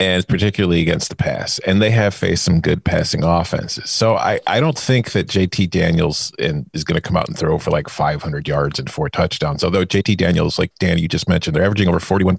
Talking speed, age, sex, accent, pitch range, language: 230 wpm, 40-59, male, American, 90-125 Hz, English